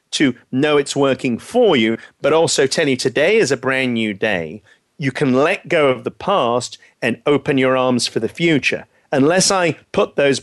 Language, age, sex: English, 40-59, male